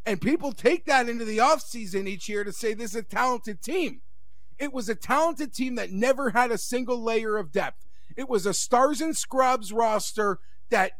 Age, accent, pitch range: 40-59, American, 205-305 Hz